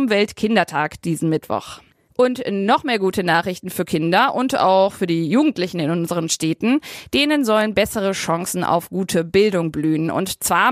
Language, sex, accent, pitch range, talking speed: German, female, German, 175-245 Hz, 155 wpm